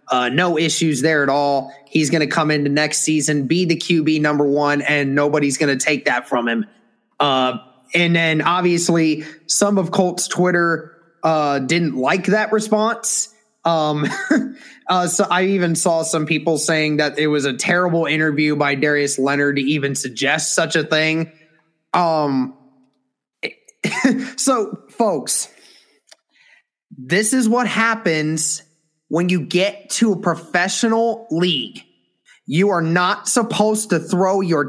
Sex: male